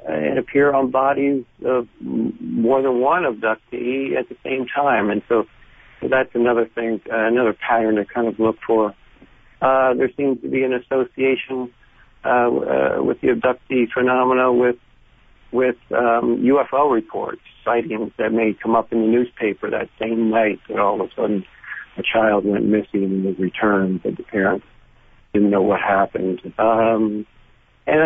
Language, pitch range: English, 110-125 Hz